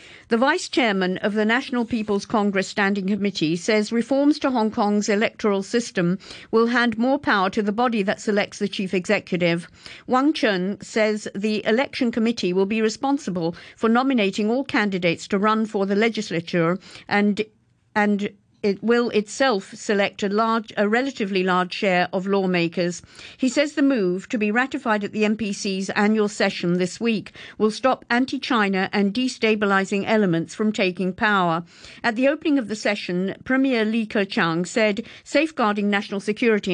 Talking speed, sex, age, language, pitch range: 155 wpm, female, 50-69, English, 195-235 Hz